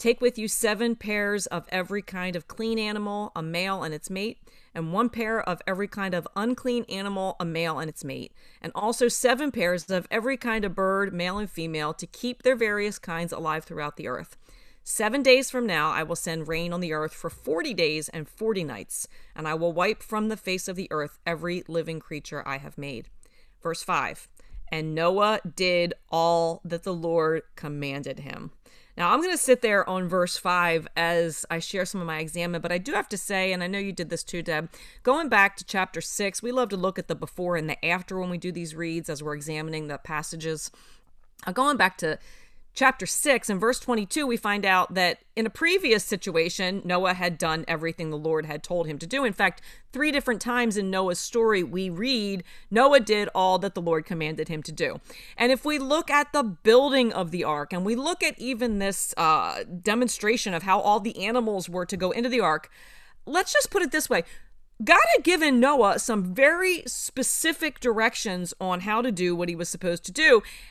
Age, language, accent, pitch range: 40-59, English, American, 165-230 Hz